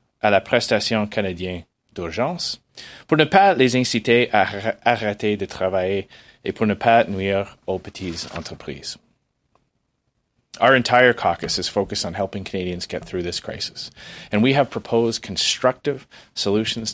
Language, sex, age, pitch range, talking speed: English, male, 30-49, 95-130 Hz, 140 wpm